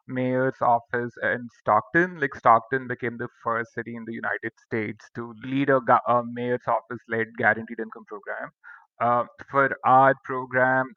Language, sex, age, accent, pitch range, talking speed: English, male, 30-49, Indian, 115-130 Hz, 150 wpm